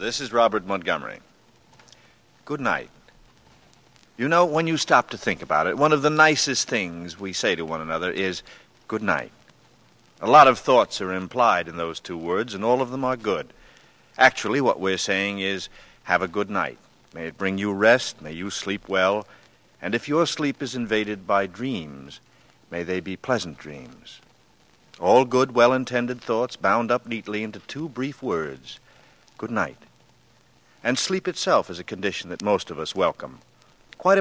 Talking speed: 175 wpm